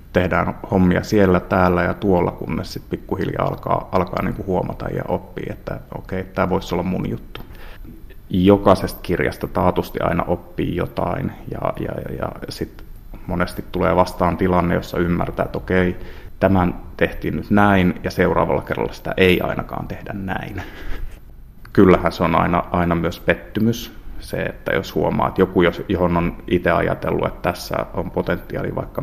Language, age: Finnish, 30-49